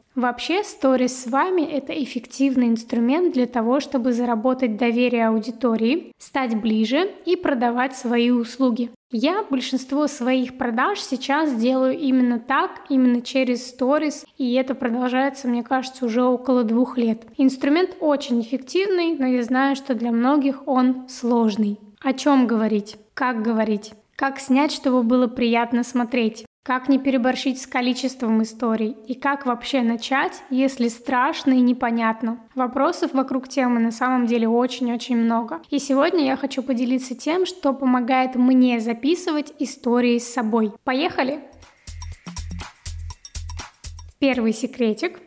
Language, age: Russian, 20-39